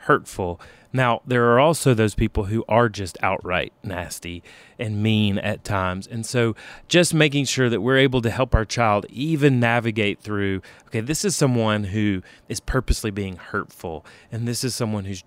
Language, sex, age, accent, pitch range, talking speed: English, male, 30-49, American, 115-155 Hz, 175 wpm